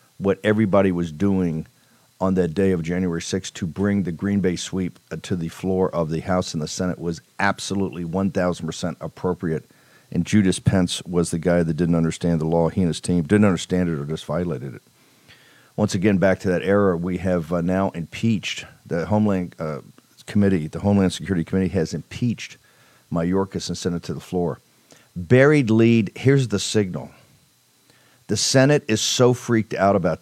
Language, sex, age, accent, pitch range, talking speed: English, male, 50-69, American, 90-110 Hz, 175 wpm